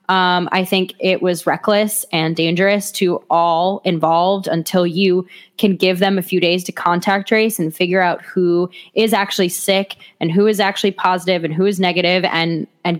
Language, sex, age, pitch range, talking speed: English, female, 10-29, 180-215 Hz, 185 wpm